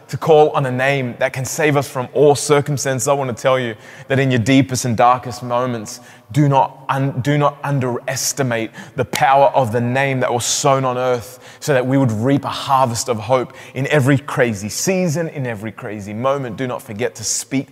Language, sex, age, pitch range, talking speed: English, male, 20-39, 115-135 Hz, 210 wpm